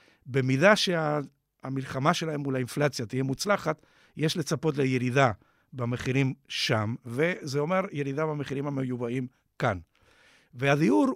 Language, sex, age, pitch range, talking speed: Hebrew, male, 50-69, 135-180 Hz, 100 wpm